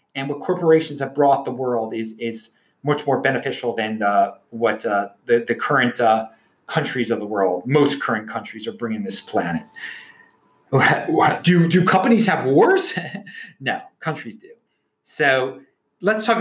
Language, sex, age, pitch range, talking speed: English, male, 30-49, 125-185 Hz, 160 wpm